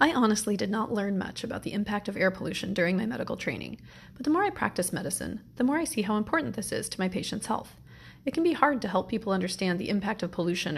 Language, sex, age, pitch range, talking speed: English, female, 30-49, 165-225 Hz, 255 wpm